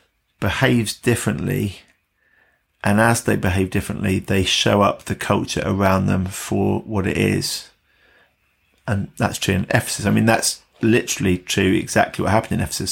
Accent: British